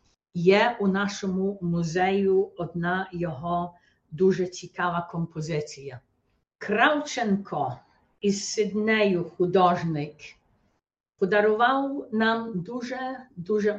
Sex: female